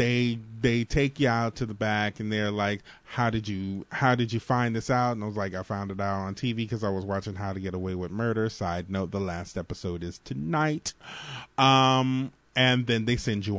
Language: English